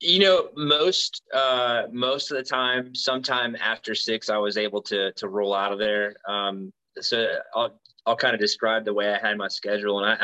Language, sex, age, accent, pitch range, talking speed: English, male, 20-39, American, 95-110 Hz, 205 wpm